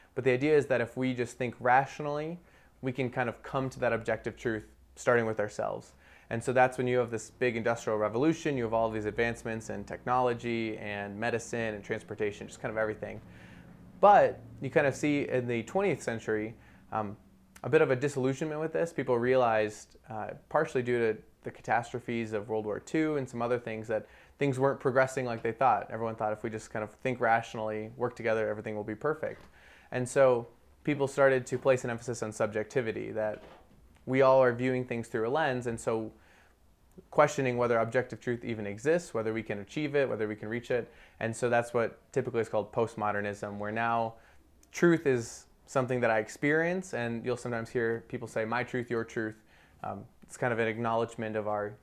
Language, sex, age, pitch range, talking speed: English, male, 20-39, 110-125 Hz, 200 wpm